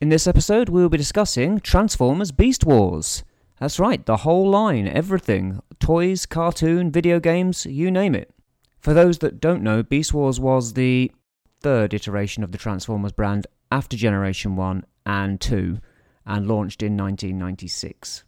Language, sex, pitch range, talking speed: English, male, 105-150 Hz, 155 wpm